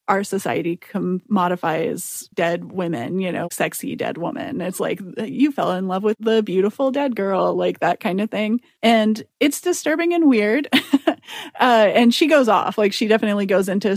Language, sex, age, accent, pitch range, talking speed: English, female, 30-49, American, 185-225 Hz, 175 wpm